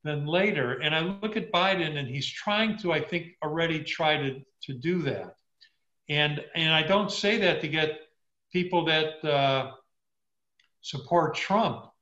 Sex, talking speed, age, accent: male, 160 wpm, 50-69, American